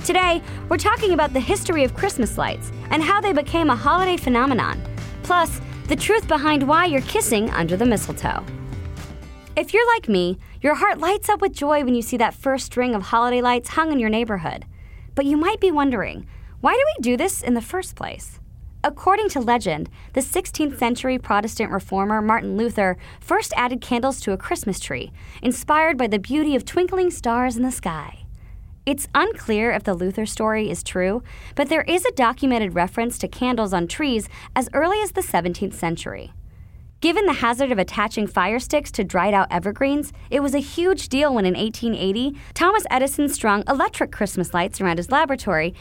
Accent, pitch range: American, 210-310 Hz